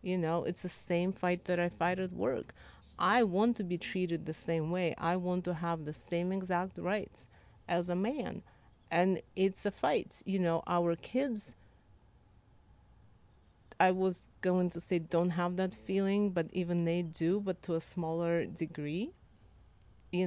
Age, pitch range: 30-49, 160-185 Hz